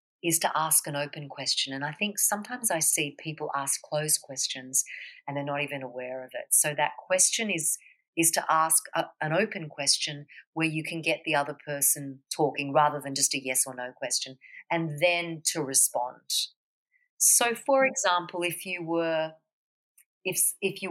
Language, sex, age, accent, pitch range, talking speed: English, female, 40-59, Australian, 160-190 Hz, 180 wpm